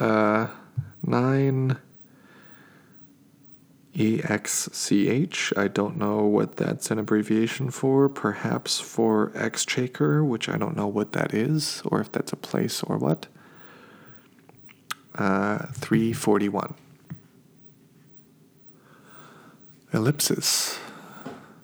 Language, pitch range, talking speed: English, 110-145 Hz, 85 wpm